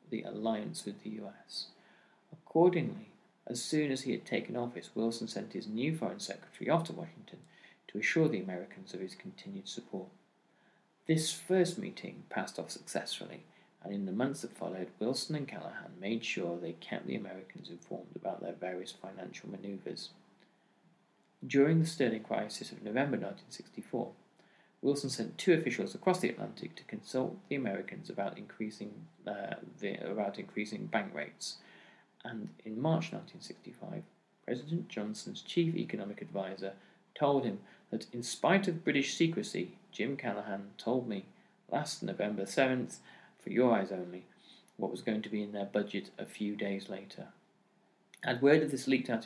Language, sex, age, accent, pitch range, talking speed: English, male, 40-59, British, 105-175 Hz, 155 wpm